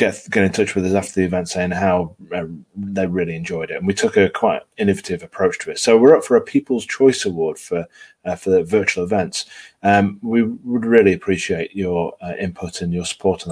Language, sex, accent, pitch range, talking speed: English, male, British, 95-130 Hz, 225 wpm